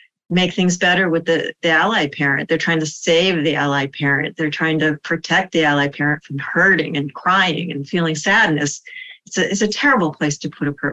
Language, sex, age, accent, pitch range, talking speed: English, female, 40-59, American, 150-180 Hz, 210 wpm